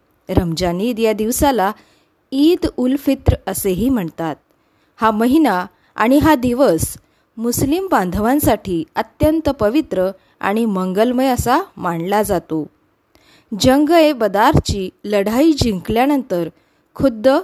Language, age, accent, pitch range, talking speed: Marathi, 20-39, native, 185-265 Hz, 95 wpm